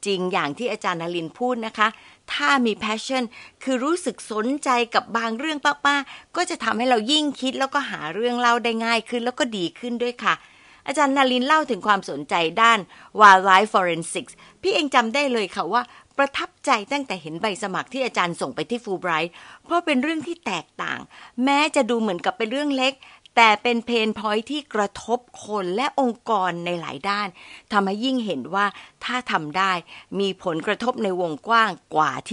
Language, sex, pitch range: Thai, female, 195-270 Hz